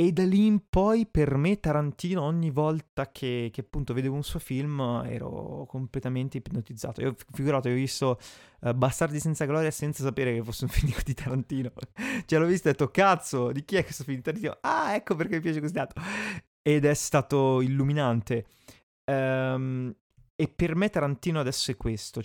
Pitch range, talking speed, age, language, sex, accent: 120-155 Hz, 190 wpm, 20-39, Italian, male, native